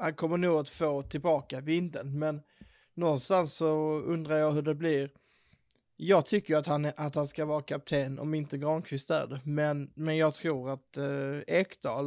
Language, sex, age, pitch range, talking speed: Swedish, male, 20-39, 145-160 Hz, 175 wpm